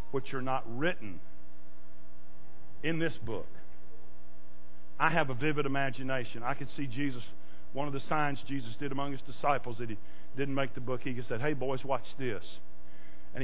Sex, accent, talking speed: male, American, 175 wpm